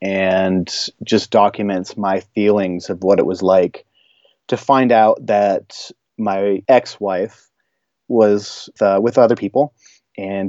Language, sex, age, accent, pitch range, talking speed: English, male, 30-49, American, 95-105 Hz, 130 wpm